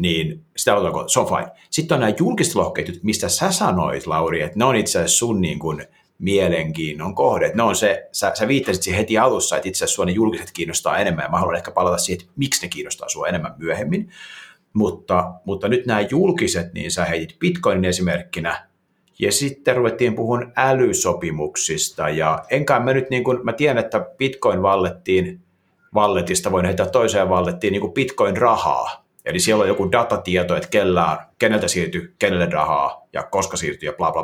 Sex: male